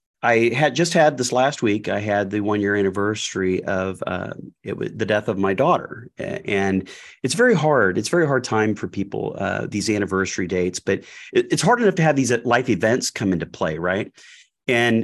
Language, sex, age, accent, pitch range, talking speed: English, male, 30-49, American, 100-145 Hz, 190 wpm